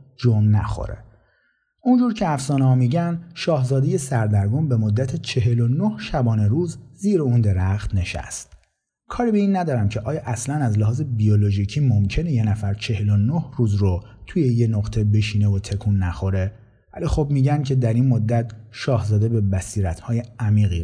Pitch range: 105-135 Hz